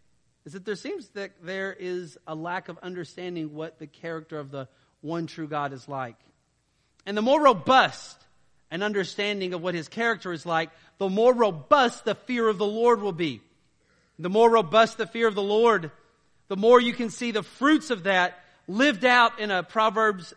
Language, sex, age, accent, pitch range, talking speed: English, male, 40-59, American, 150-195 Hz, 190 wpm